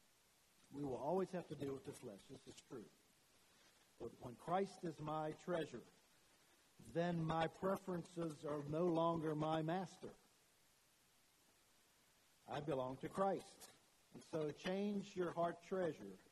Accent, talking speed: American, 130 wpm